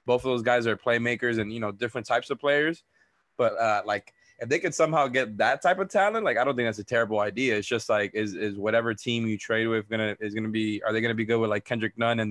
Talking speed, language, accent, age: 280 wpm, English, American, 20-39